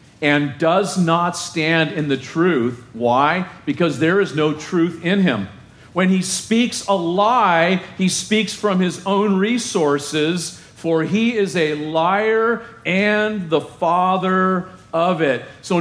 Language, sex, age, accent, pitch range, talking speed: English, male, 50-69, American, 125-180 Hz, 140 wpm